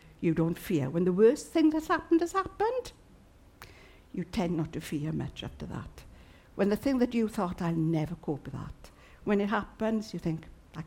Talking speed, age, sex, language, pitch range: 200 wpm, 60-79, female, English, 140-195 Hz